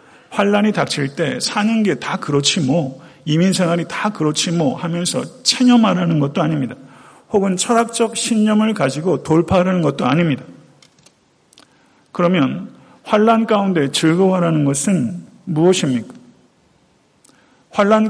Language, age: Korean, 40-59